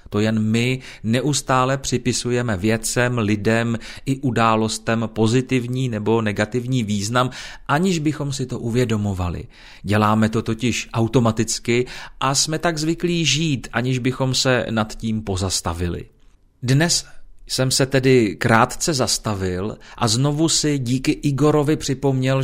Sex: male